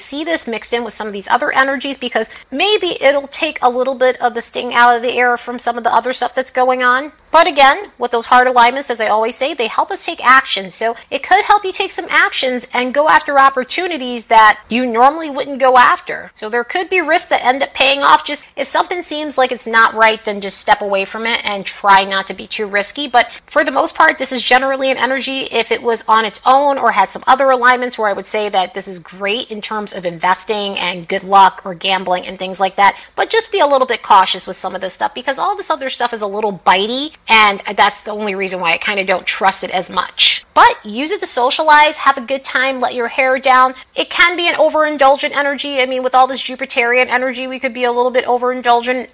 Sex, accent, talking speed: female, American, 255 wpm